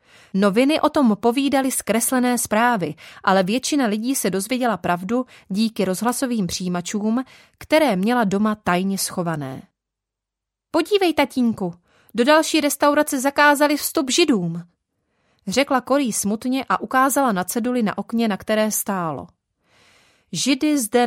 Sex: female